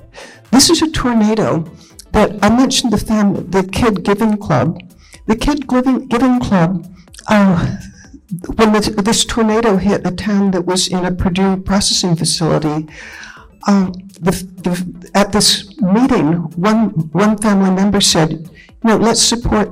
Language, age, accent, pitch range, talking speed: English, 60-79, American, 180-220 Hz, 145 wpm